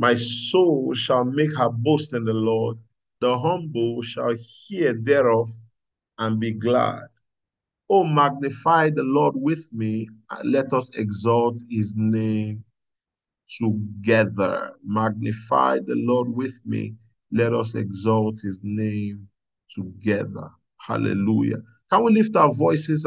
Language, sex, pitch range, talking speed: English, male, 115-150 Hz, 120 wpm